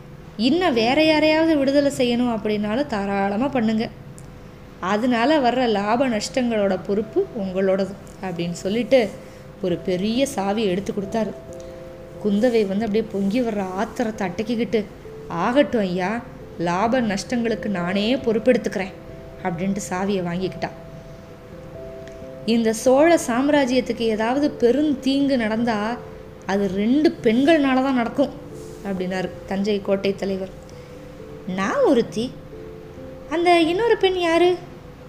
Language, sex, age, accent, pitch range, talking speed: Tamil, female, 20-39, native, 190-245 Hz, 100 wpm